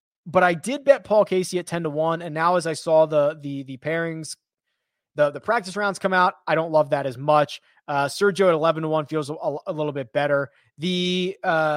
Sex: male